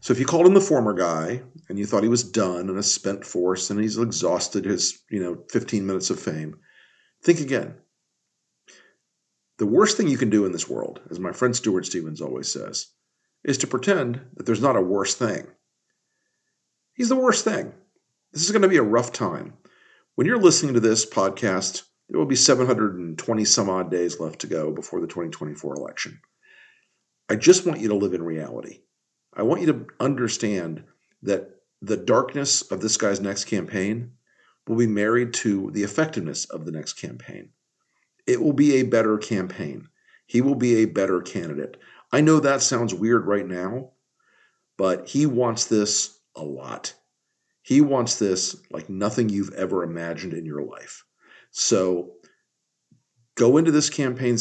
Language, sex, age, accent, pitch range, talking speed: English, male, 50-69, American, 100-135 Hz, 175 wpm